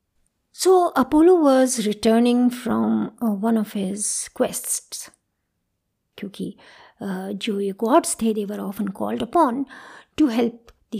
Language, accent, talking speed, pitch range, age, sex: Hindi, native, 120 wpm, 205-275 Hz, 50-69, female